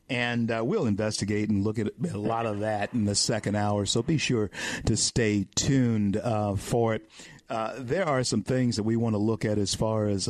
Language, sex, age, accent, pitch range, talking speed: English, male, 50-69, American, 105-120 Hz, 220 wpm